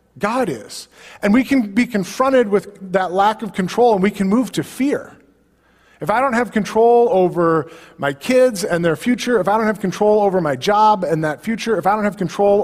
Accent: American